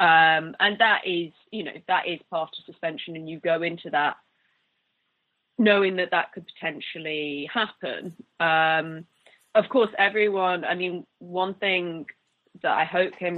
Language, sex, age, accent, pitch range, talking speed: English, female, 20-39, British, 160-190 Hz, 150 wpm